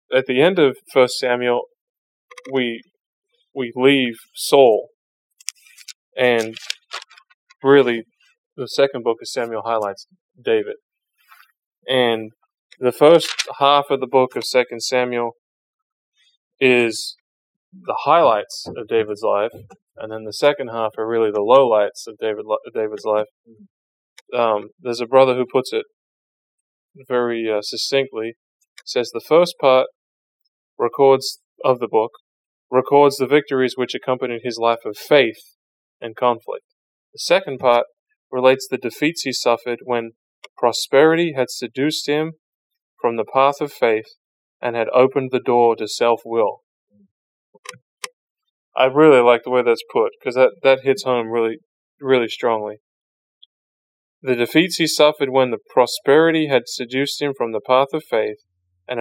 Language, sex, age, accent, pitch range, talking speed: English, male, 20-39, American, 115-160 Hz, 135 wpm